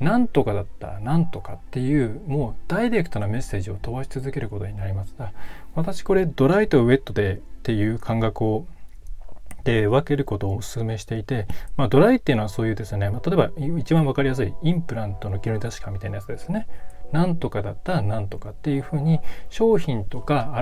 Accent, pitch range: native, 105-145 Hz